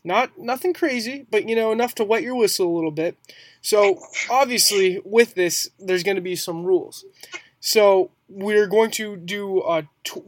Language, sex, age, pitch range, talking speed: English, male, 20-39, 170-220 Hz, 180 wpm